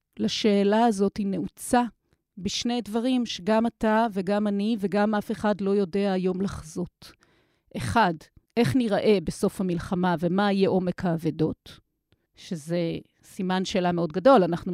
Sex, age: female, 40-59